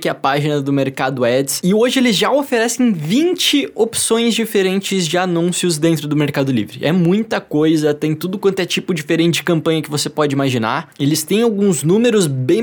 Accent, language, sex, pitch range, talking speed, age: Brazilian, Portuguese, male, 155-195 Hz, 190 wpm, 20-39